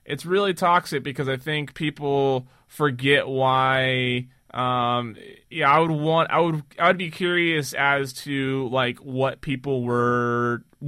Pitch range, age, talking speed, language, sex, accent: 120-150 Hz, 20-39, 140 wpm, English, male, American